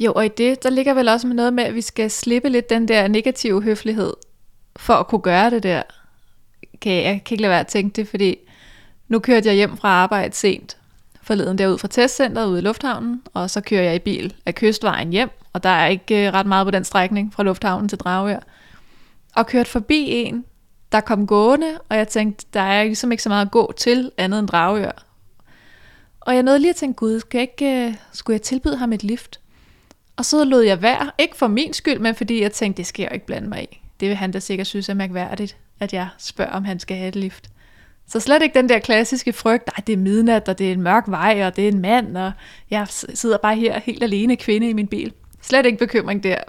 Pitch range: 195-245 Hz